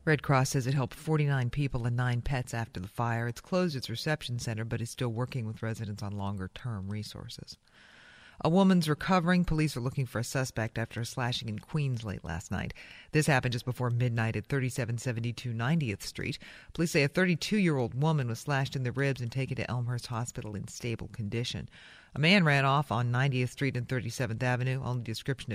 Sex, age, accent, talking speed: female, 40-59, American, 195 wpm